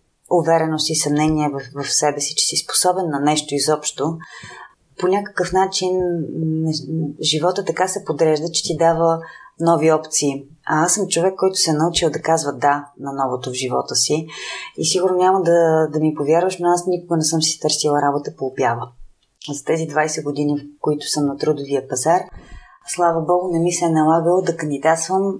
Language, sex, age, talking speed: Bulgarian, female, 30-49, 180 wpm